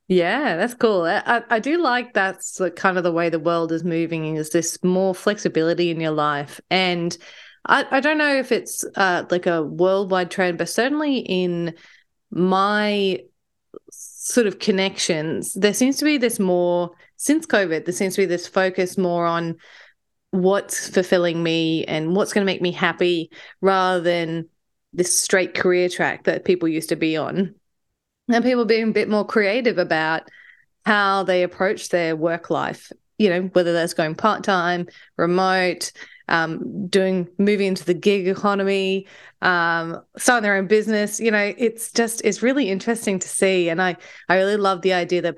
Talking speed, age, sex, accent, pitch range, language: 175 wpm, 30-49, female, Australian, 170-205 Hz, English